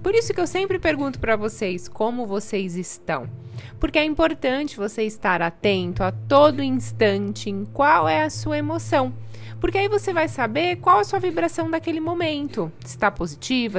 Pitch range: 155-240 Hz